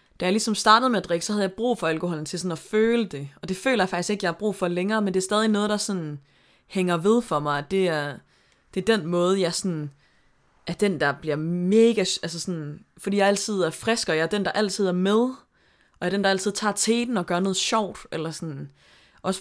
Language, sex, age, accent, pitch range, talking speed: Danish, female, 20-39, native, 155-200 Hz, 255 wpm